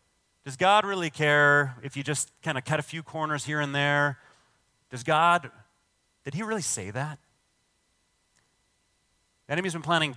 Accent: American